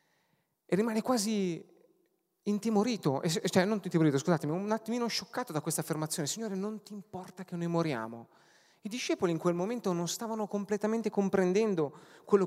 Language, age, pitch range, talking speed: Italian, 30-49, 160-210 Hz, 150 wpm